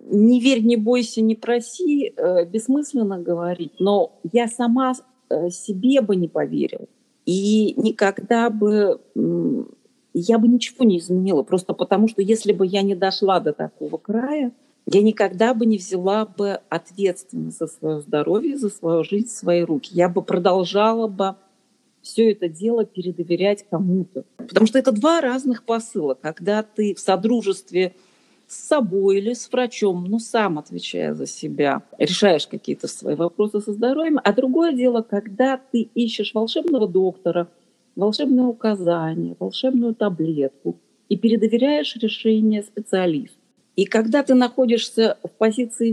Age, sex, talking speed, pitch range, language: 40-59, female, 145 wpm, 190-245 Hz, Russian